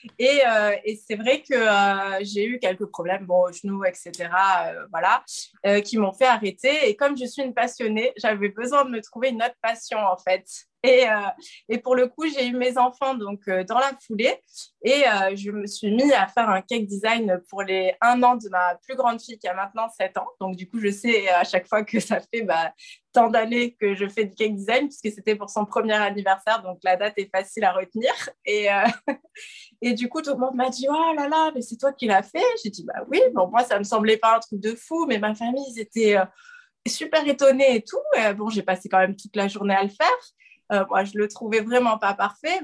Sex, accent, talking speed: female, French, 245 wpm